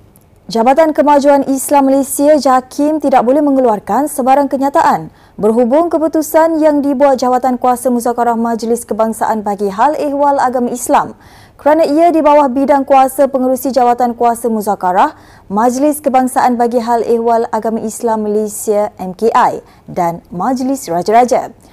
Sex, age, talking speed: female, 20-39, 125 wpm